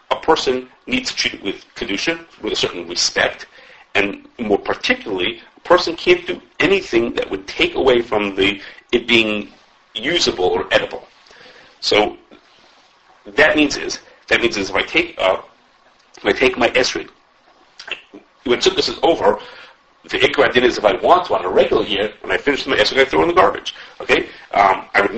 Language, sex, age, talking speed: English, male, 40-59, 195 wpm